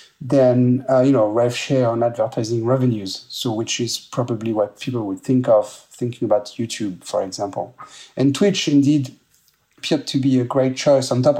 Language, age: English, 40-59